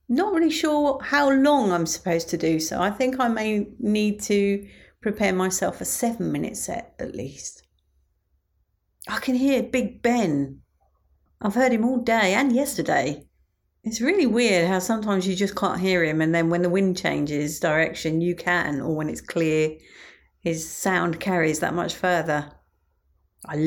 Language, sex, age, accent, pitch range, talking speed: English, female, 50-69, British, 155-215 Hz, 165 wpm